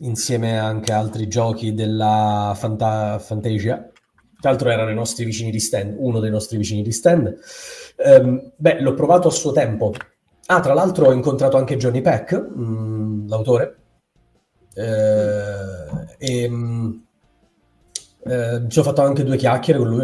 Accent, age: native, 30-49